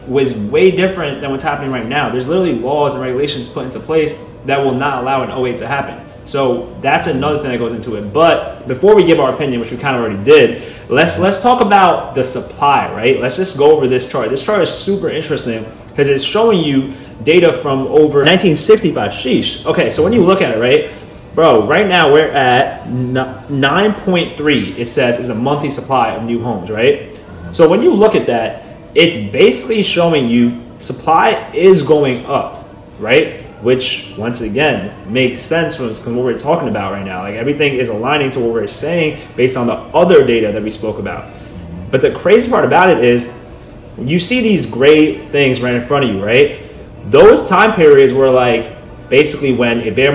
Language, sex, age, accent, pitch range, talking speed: English, male, 20-39, American, 120-165 Hz, 200 wpm